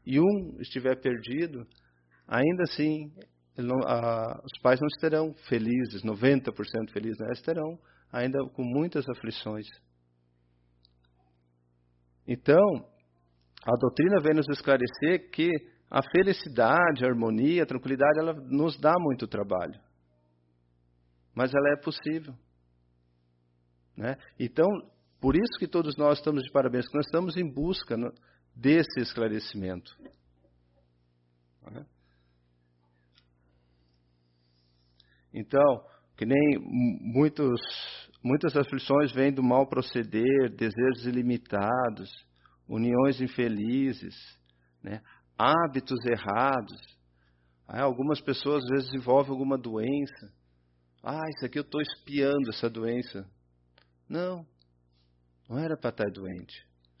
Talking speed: 105 wpm